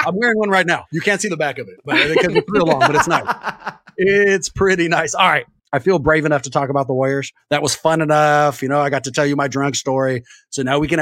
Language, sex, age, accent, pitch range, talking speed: English, male, 30-49, American, 135-190 Hz, 285 wpm